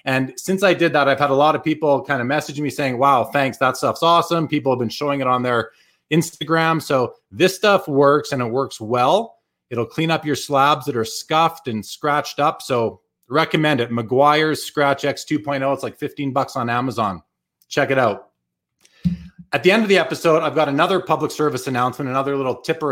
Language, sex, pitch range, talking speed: English, male, 135-160 Hz, 210 wpm